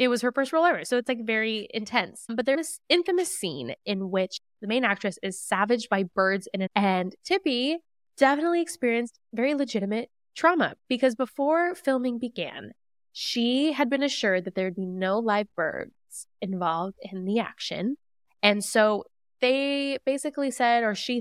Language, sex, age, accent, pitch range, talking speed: English, female, 10-29, American, 195-250 Hz, 165 wpm